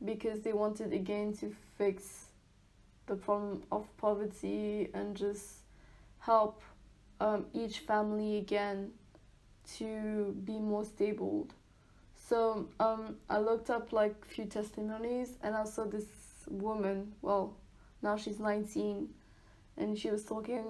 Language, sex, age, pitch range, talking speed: English, female, 10-29, 195-220 Hz, 120 wpm